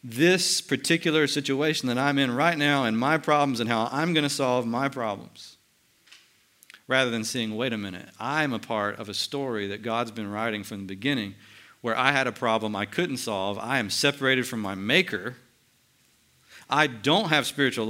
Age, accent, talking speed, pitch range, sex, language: 50-69, American, 190 wpm, 105-135 Hz, male, English